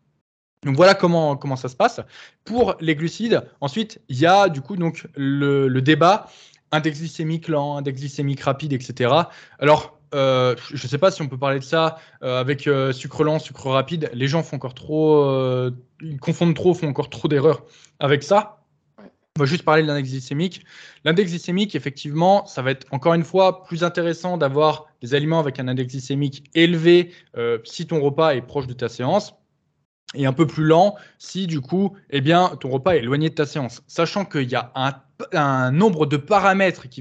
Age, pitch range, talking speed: 20-39, 140-175 Hz, 200 wpm